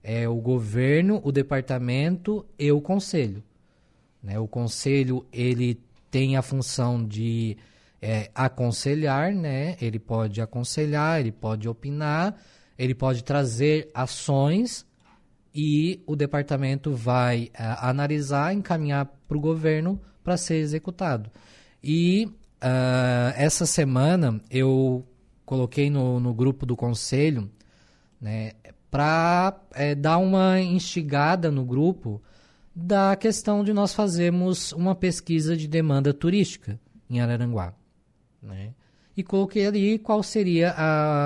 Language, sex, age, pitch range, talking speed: Portuguese, male, 20-39, 125-165 Hz, 115 wpm